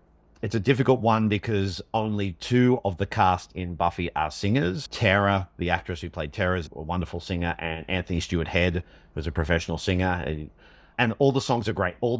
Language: English